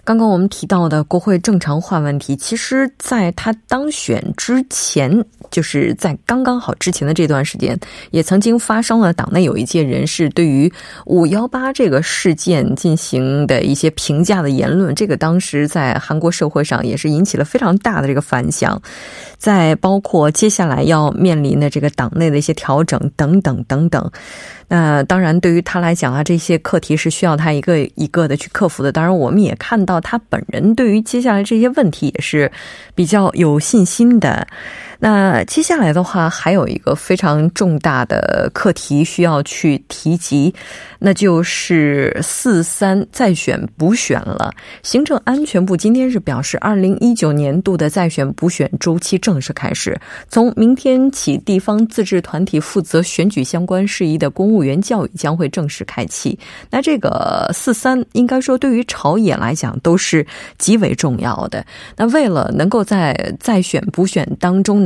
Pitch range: 155-215 Hz